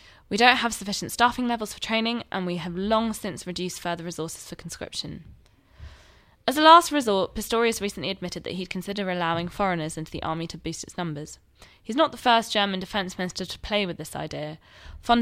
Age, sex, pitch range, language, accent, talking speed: 20-39, female, 175-220 Hz, English, British, 195 wpm